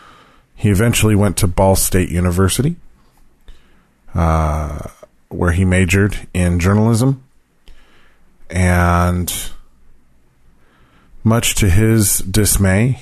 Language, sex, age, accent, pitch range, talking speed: English, male, 40-59, American, 80-100 Hz, 85 wpm